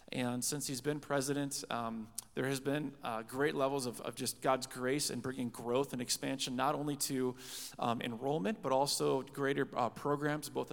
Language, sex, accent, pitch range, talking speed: English, male, American, 120-150 Hz, 185 wpm